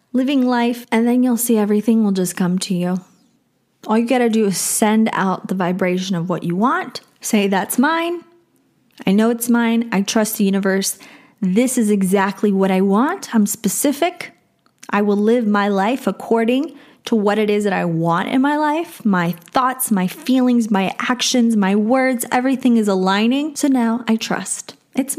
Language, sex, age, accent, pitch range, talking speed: English, female, 20-39, American, 195-245 Hz, 185 wpm